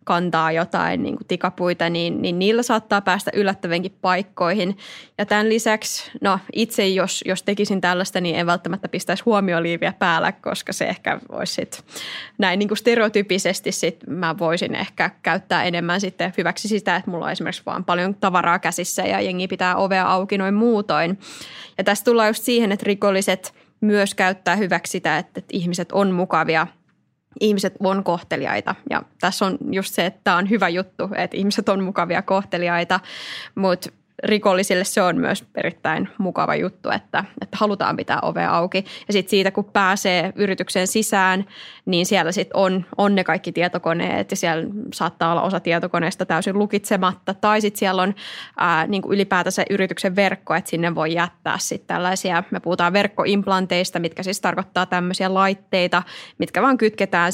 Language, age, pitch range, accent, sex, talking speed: Finnish, 20-39, 175-200 Hz, native, female, 165 wpm